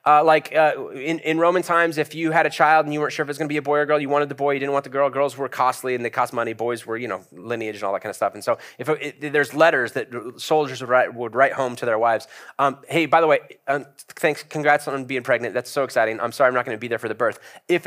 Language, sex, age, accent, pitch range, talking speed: English, male, 30-49, American, 120-155 Hz, 320 wpm